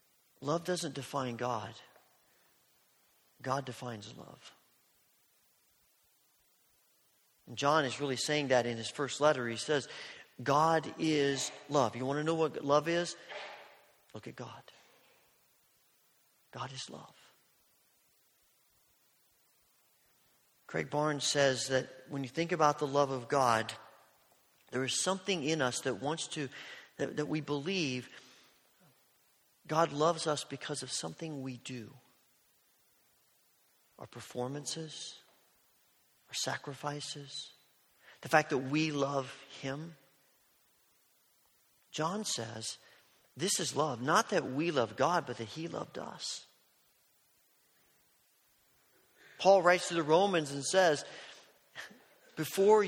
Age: 40-59